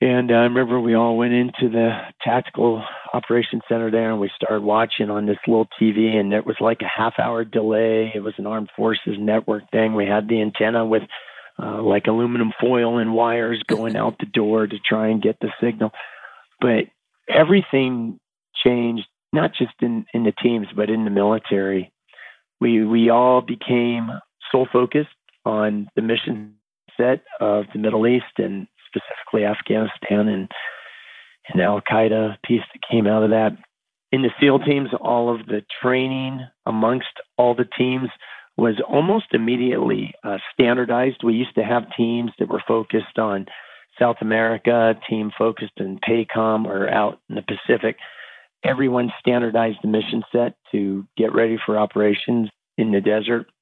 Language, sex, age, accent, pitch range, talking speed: English, male, 40-59, American, 110-120 Hz, 160 wpm